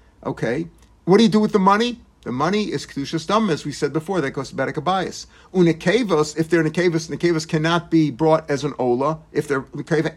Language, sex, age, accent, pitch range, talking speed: English, male, 50-69, American, 155-195 Hz, 200 wpm